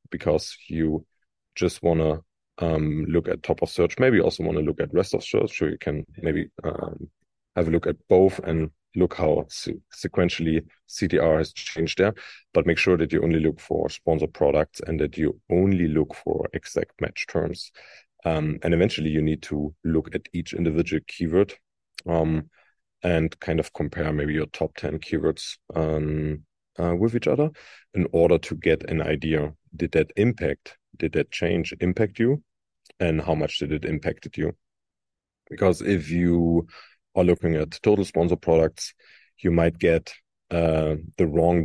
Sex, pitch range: male, 80-90 Hz